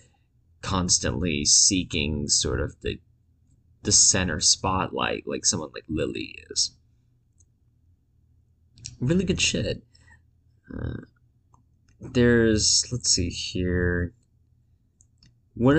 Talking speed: 80 wpm